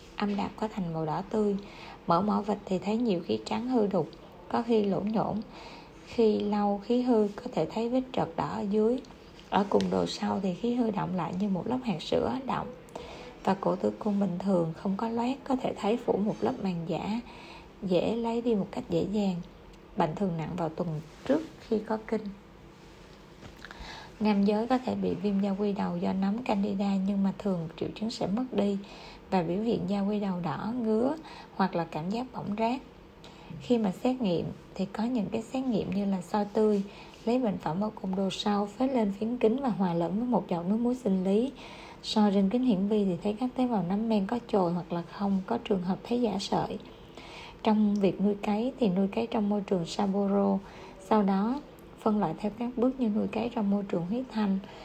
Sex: female